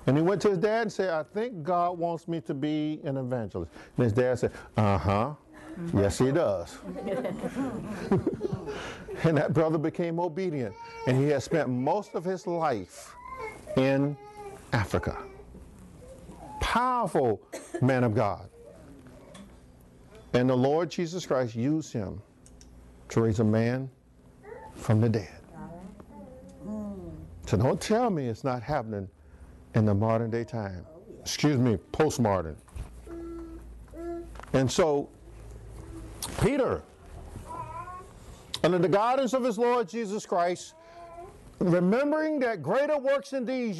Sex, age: male, 50-69